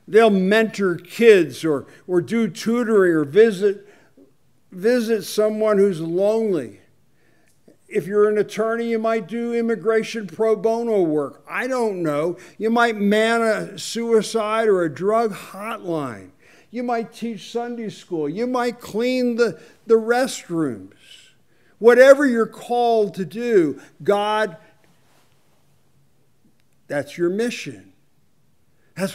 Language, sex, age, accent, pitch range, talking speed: English, male, 50-69, American, 170-225 Hz, 115 wpm